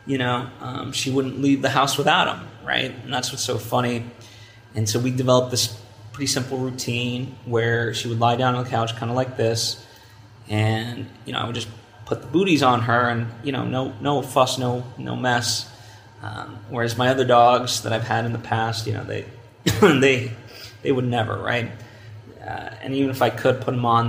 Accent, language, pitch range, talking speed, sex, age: American, English, 115-125 Hz, 210 wpm, male, 20-39